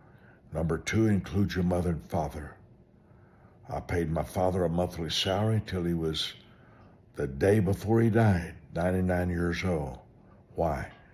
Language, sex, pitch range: English, male, 80-100 Hz